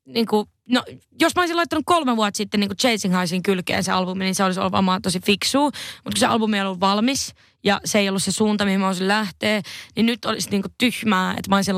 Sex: female